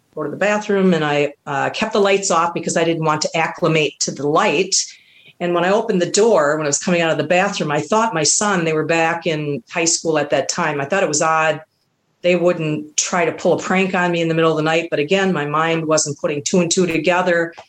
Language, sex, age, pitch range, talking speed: English, female, 40-59, 155-185 Hz, 260 wpm